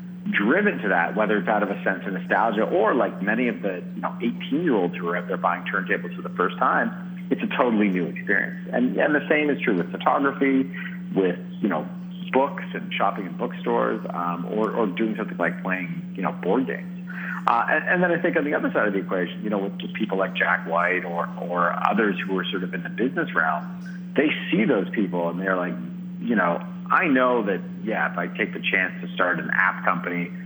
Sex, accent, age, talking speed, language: male, American, 40-59, 225 wpm, English